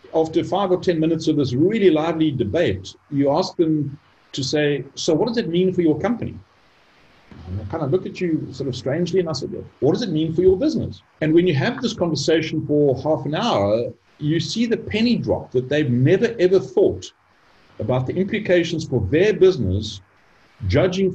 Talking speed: 200 wpm